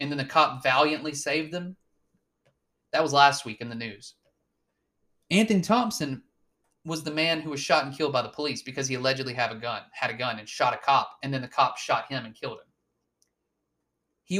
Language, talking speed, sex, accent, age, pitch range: English, 210 wpm, male, American, 30-49, 115-165 Hz